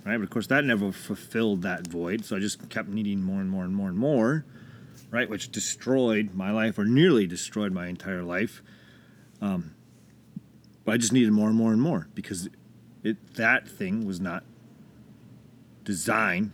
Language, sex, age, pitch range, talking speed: English, male, 30-49, 105-135 Hz, 180 wpm